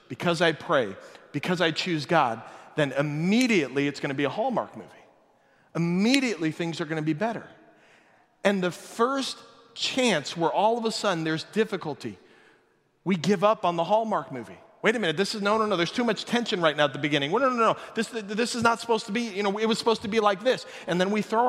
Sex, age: male, 40-59